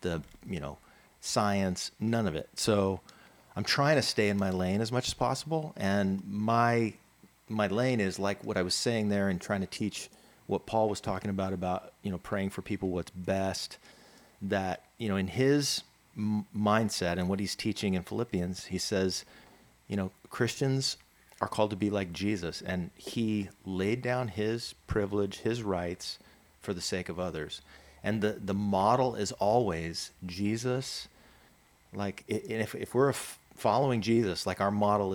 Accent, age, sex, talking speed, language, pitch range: American, 40-59, male, 170 wpm, English, 95-110 Hz